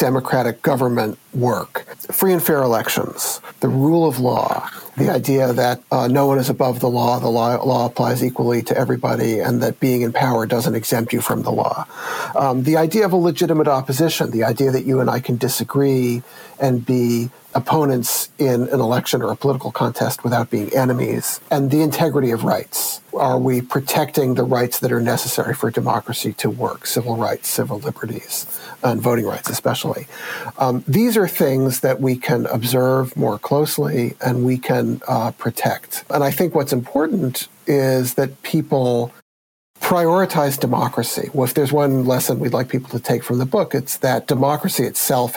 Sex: male